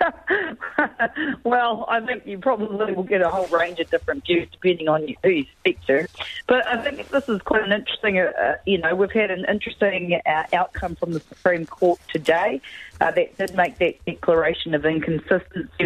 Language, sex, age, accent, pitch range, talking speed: English, female, 40-59, Australian, 155-200 Hz, 185 wpm